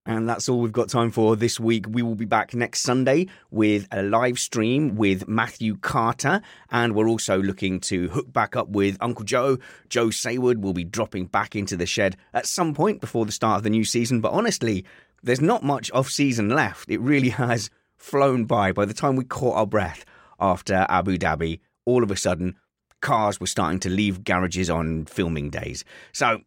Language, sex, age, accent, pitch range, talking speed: English, male, 30-49, British, 95-125 Hz, 200 wpm